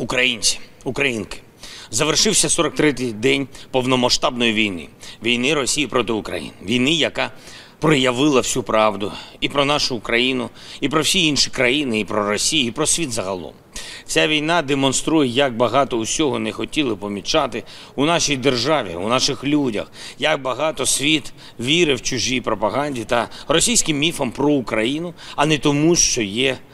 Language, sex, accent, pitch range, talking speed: Ukrainian, male, native, 120-165 Hz, 145 wpm